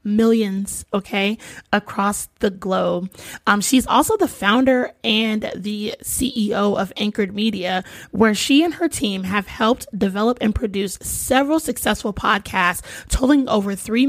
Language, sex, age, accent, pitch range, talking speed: English, female, 20-39, American, 195-230 Hz, 135 wpm